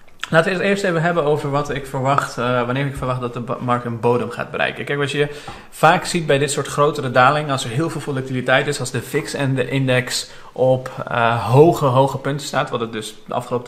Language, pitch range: Dutch, 120-140 Hz